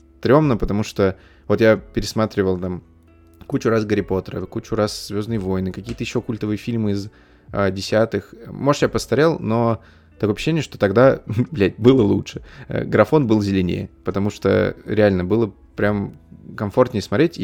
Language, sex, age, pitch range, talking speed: Russian, male, 20-39, 95-115 Hz, 150 wpm